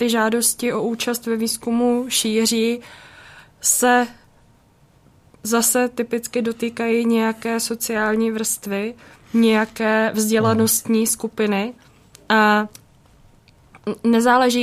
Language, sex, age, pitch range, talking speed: Czech, female, 20-39, 220-245 Hz, 80 wpm